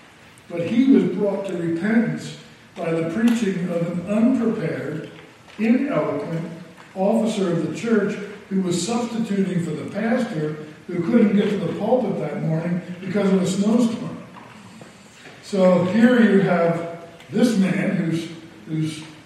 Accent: American